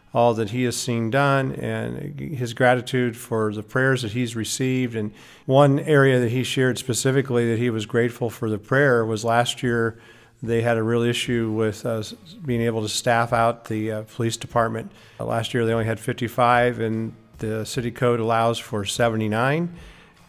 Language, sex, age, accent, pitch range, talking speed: English, male, 50-69, American, 110-130 Hz, 185 wpm